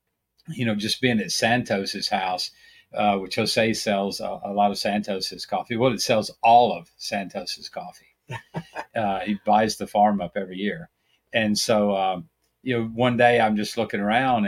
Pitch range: 100-115 Hz